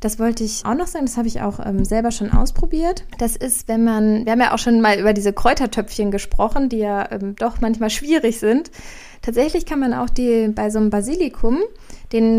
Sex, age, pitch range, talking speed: female, 20-39, 205-250 Hz, 220 wpm